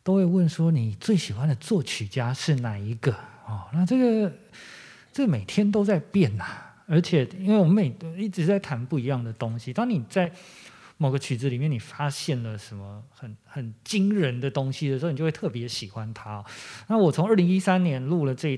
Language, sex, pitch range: Chinese, male, 120-180 Hz